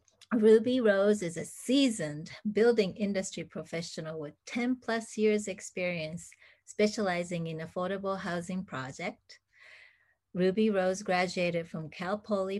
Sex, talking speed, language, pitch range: female, 115 wpm, English, 170-205 Hz